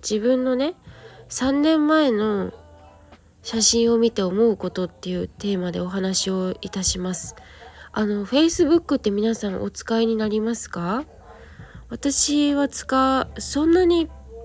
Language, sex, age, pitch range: Japanese, female, 20-39, 190-260 Hz